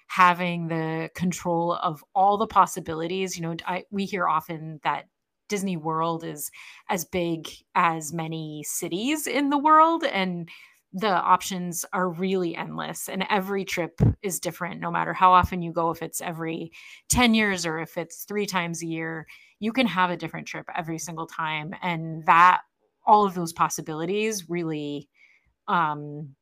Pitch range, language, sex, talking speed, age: 165-190 Hz, English, female, 160 wpm, 30-49